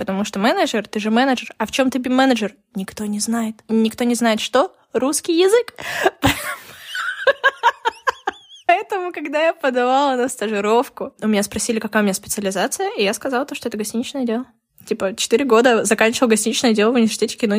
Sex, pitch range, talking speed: female, 205-255 Hz, 165 wpm